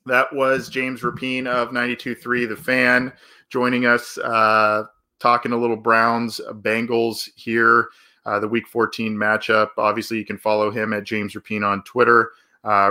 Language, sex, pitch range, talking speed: English, male, 105-125 Hz, 155 wpm